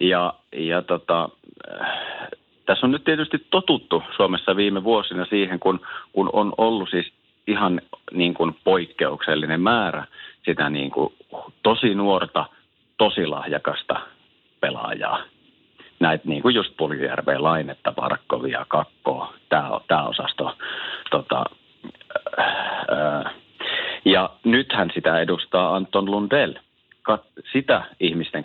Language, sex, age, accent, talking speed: Finnish, male, 40-59, native, 110 wpm